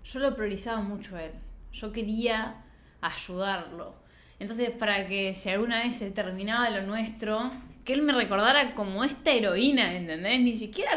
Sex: female